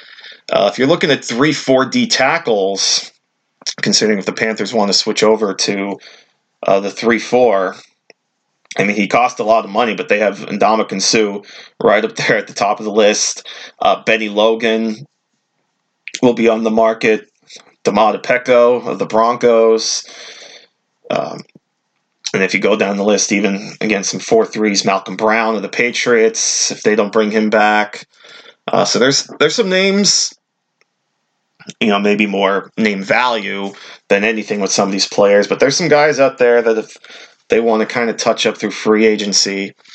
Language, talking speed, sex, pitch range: English, 170 wpm, male, 100-115 Hz